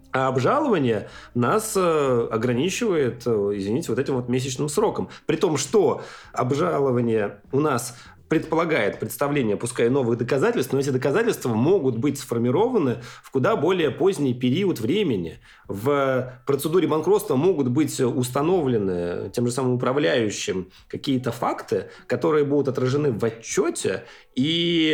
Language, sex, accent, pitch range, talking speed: Russian, male, native, 115-150 Hz, 125 wpm